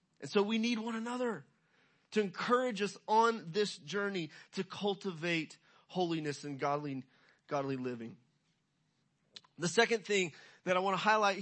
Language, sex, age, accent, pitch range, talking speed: English, male, 30-49, American, 175-220 Hz, 140 wpm